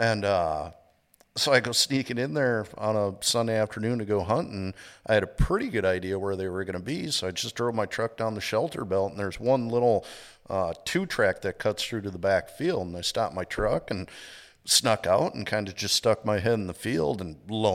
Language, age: English, 50-69